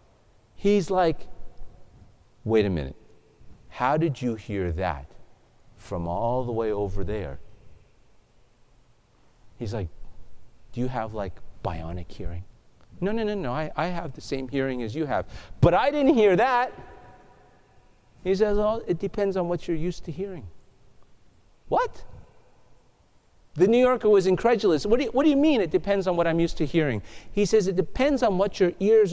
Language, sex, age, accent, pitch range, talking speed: English, male, 50-69, American, 100-165 Hz, 165 wpm